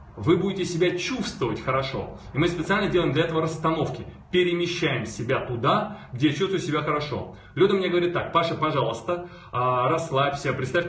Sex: male